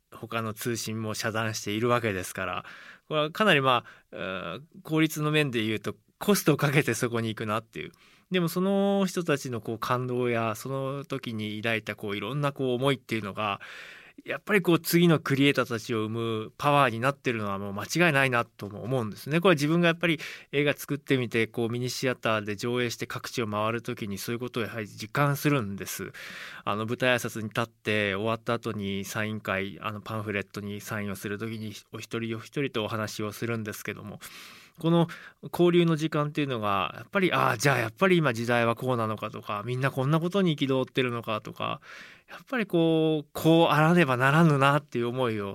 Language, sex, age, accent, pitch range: Japanese, male, 20-39, native, 110-155 Hz